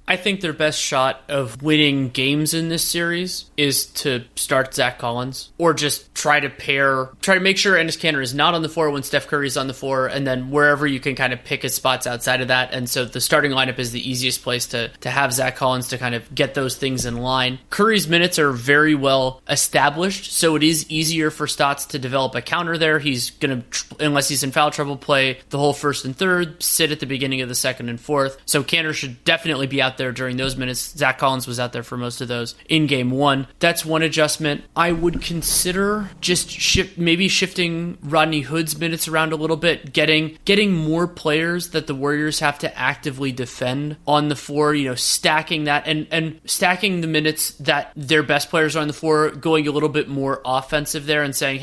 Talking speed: 220 wpm